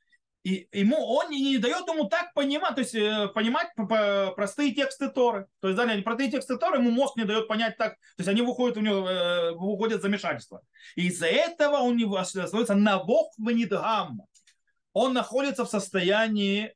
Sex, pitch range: male, 175-240 Hz